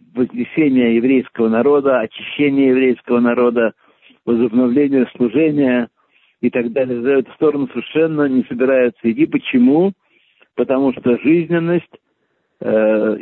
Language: Russian